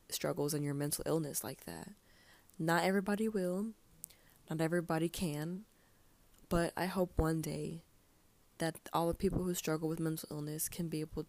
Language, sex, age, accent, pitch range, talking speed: English, female, 20-39, American, 150-175 Hz, 160 wpm